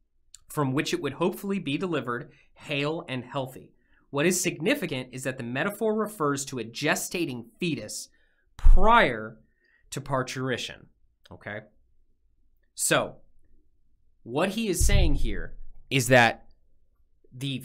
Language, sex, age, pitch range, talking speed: English, male, 20-39, 125-185 Hz, 120 wpm